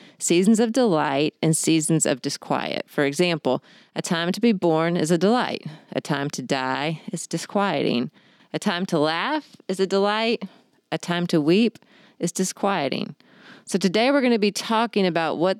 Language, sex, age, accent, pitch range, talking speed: English, female, 30-49, American, 160-205 Hz, 175 wpm